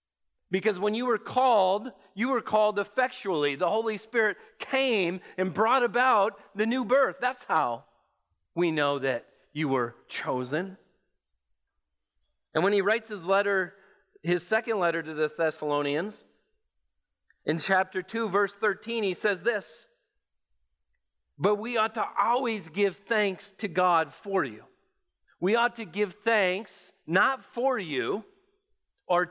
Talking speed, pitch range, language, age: 135 wpm, 135-210 Hz, English, 40-59